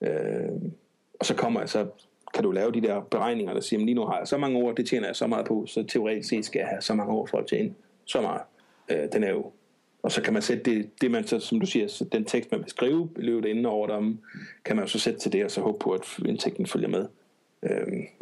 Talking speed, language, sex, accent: 265 wpm, Danish, male, native